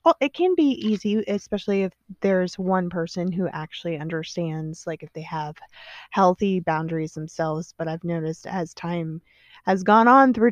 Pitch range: 165-210 Hz